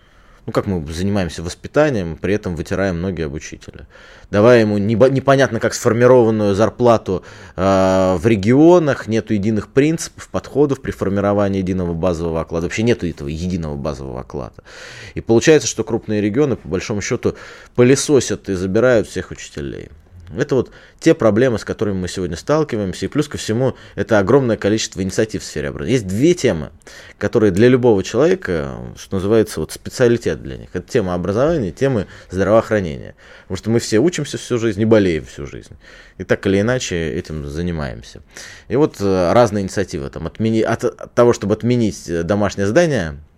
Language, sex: Russian, male